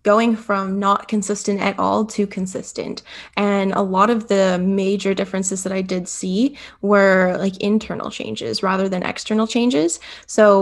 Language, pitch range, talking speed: English, 190-210 Hz, 160 wpm